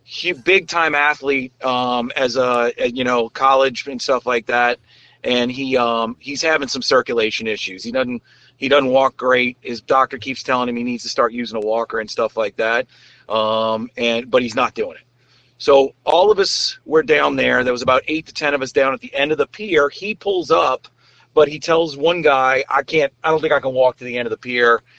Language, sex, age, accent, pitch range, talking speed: English, male, 30-49, American, 120-155 Hz, 230 wpm